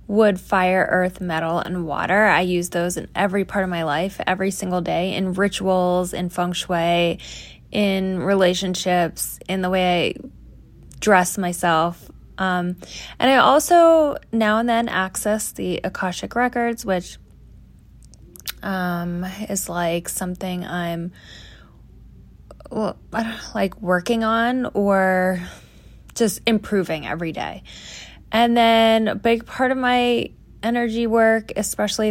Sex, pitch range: female, 180-225 Hz